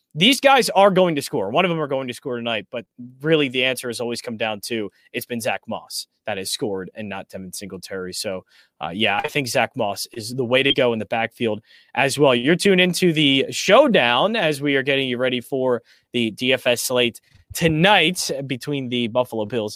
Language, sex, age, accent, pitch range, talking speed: English, male, 30-49, American, 125-170 Hz, 215 wpm